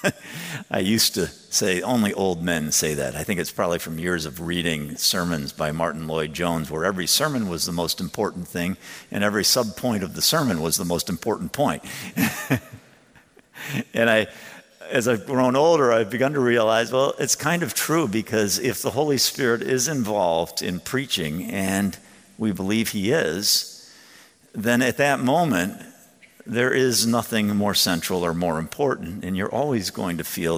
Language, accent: English, American